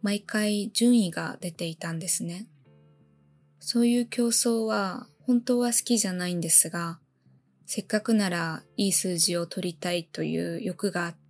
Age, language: 20-39, Japanese